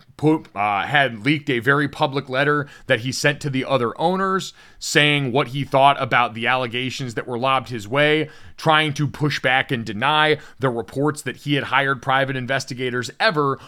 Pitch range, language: 120-150 Hz, English